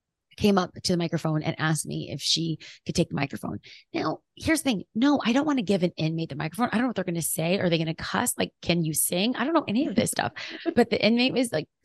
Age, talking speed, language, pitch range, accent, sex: 30-49, 290 wpm, English, 170-220 Hz, American, female